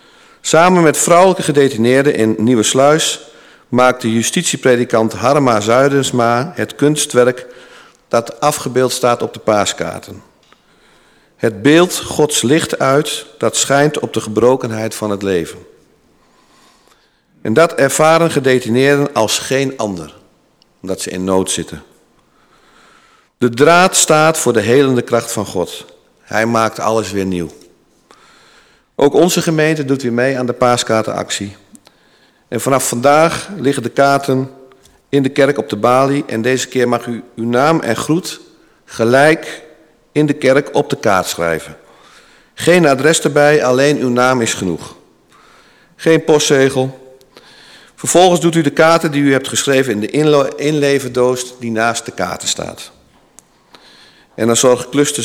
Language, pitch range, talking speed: Dutch, 110-145 Hz, 140 wpm